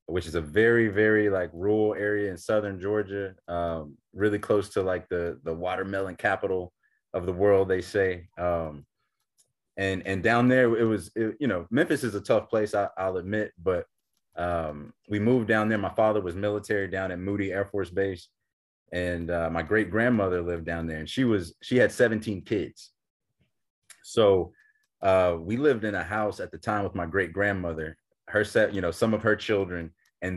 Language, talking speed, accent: English, 190 wpm, American